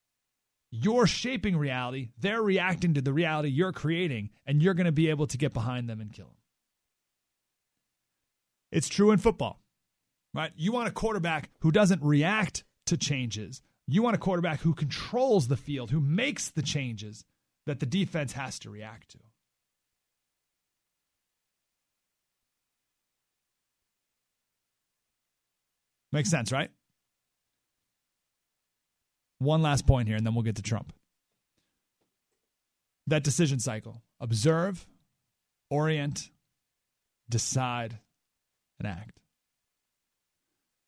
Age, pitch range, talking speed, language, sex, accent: 30-49, 100-155 Hz, 115 wpm, English, male, American